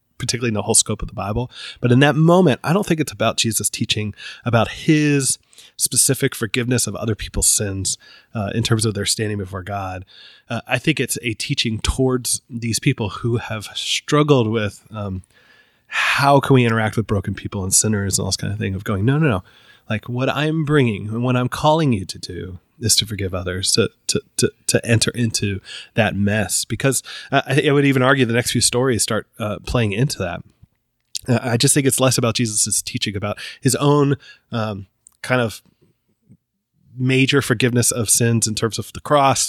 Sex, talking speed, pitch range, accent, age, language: male, 200 wpm, 105-125 Hz, American, 30-49, English